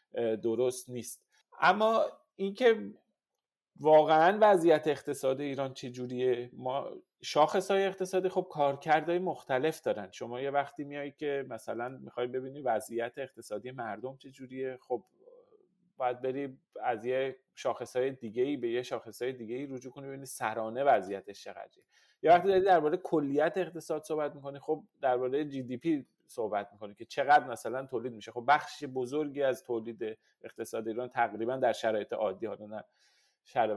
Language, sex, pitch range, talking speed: Persian, male, 120-155 Hz, 150 wpm